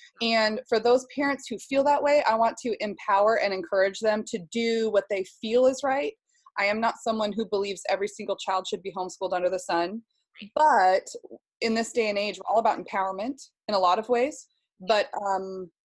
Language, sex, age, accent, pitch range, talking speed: English, female, 20-39, American, 200-255 Hz, 205 wpm